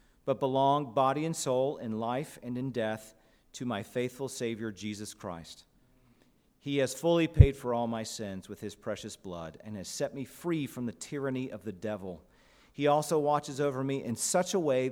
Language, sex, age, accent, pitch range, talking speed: English, male, 40-59, American, 105-135 Hz, 195 wpm